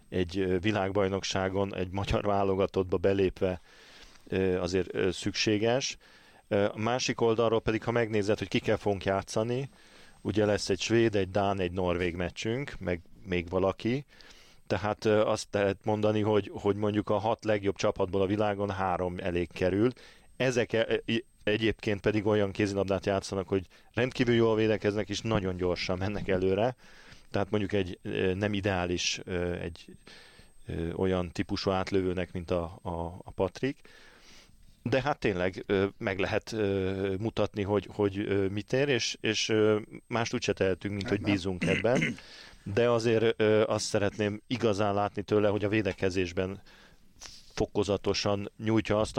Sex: male